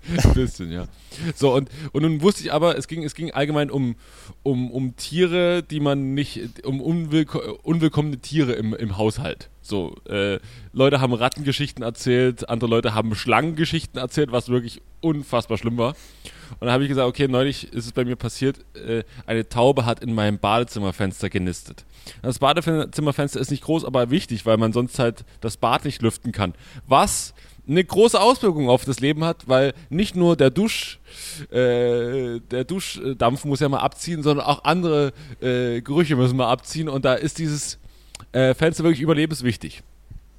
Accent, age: German, 20-39